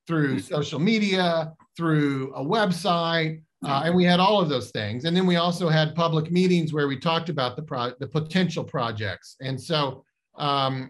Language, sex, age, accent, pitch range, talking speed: Spanish, male, 40-59, American, 150-190 Hz, 180 wpm